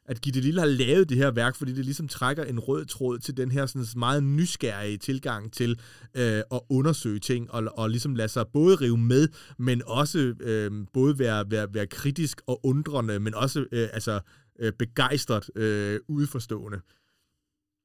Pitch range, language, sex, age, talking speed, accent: 110-135 Hz, Danish, male, 30-49, 155 wpm, native